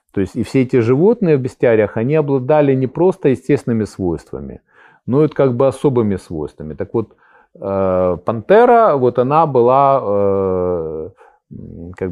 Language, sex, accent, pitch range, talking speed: Ukrainian, male, native, 95-135 Hz, 135 wpm